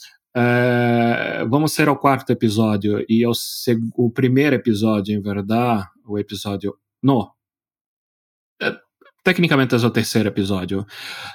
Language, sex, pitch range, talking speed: Spanish, male, 105-130 Hz, 115 wpm